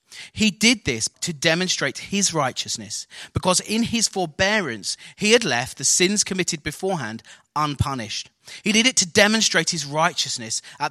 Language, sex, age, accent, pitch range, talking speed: English, male, 30-49, British, 165-225 Hz, 150 wpm